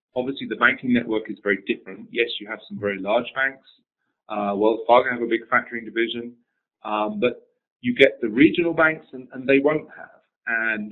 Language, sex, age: English, male, 30-49